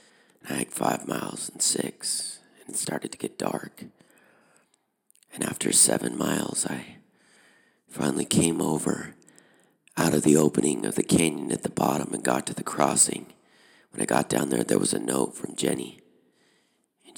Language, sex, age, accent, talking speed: English, male, 40-59, American, 165 wpm